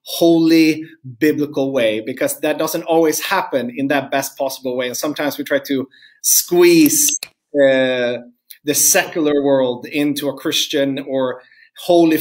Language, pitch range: English, 140-175 Hz